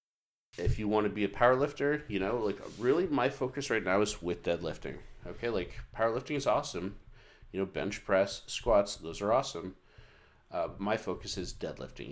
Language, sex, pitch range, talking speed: English, male, 100-120 Hz, 180 wpm